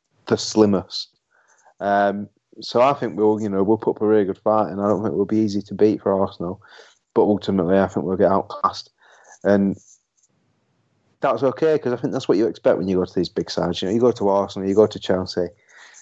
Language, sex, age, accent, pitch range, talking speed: English, male, 30-49, British, 100-110 Hz, 230 wpm